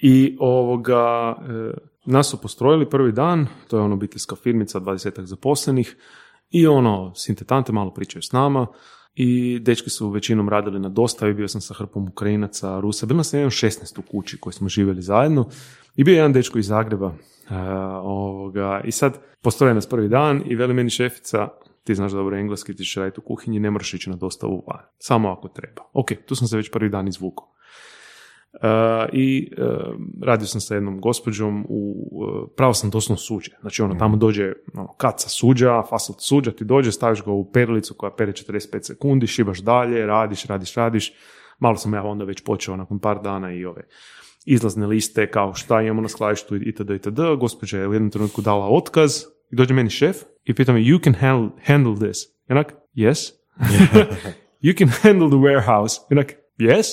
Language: Croatian